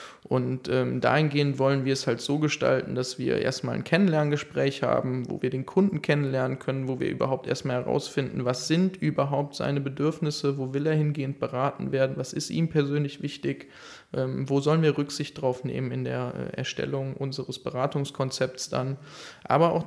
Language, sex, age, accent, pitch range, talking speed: German, male, 20-39, German, 130-150 Hz, 175 wpm